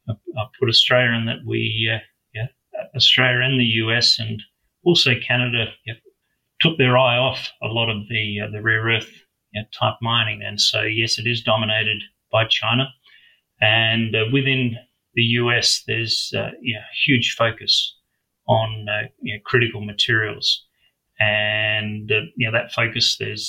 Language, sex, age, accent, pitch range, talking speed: English, male, 30-49, Australian, 110-125 Hz, 165 wpm